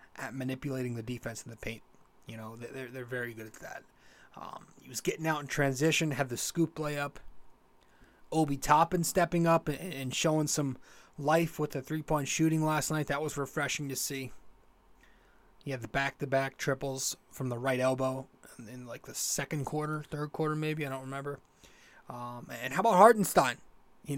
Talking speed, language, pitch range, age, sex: 175 wpm, English, 130-160 Hz, 20-39, male